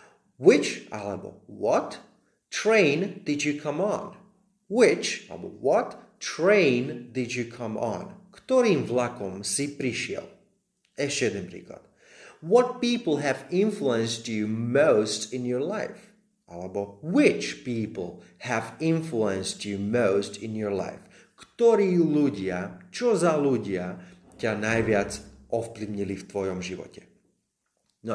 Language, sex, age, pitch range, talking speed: Slovak, male, 30-49, 105-165 Hz, 115 wpm